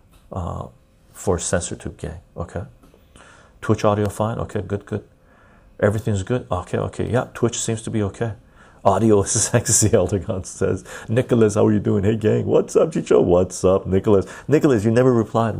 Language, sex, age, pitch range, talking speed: English, male, 30-49, 80-100 Hz, 170 wpm